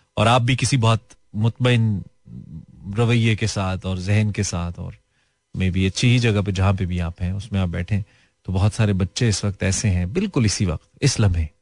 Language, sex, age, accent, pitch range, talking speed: Hindi, male, 30-49, native, 90-110 Hz, 210 wpm